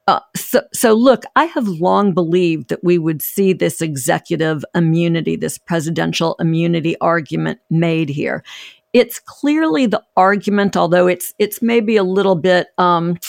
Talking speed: 150 wpm